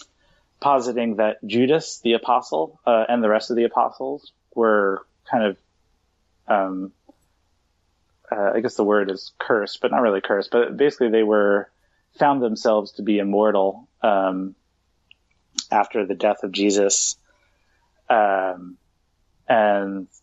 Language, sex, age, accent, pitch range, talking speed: English, male, 30-49, American, 95-110 Hz, 130 wpm